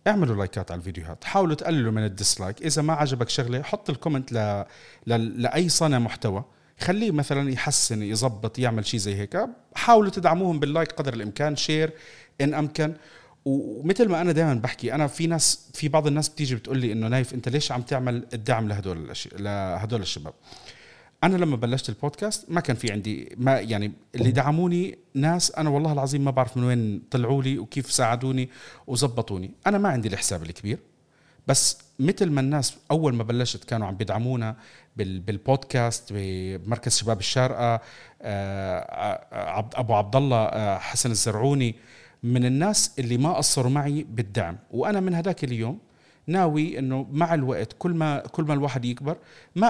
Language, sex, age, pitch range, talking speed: Arabic, male, 40-59, 115-155 Hz, 165 wpm